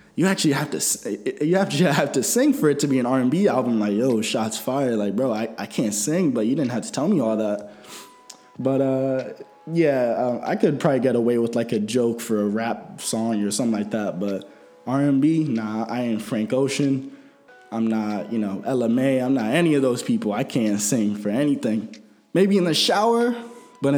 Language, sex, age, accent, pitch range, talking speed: English, male, 20-39, American, 110-140 Hz, 225 wpm